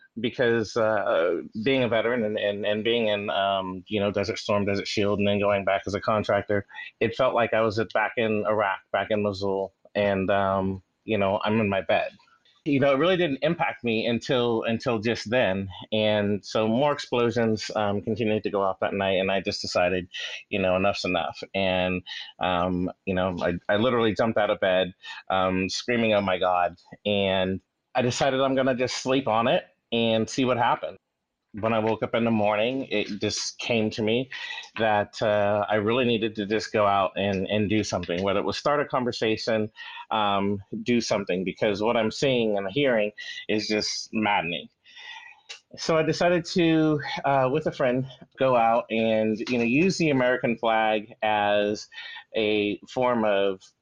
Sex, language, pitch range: male, English, 100-120 Hz